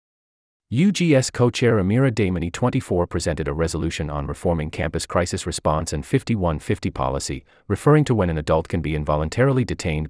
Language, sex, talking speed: English, male, 145 wpm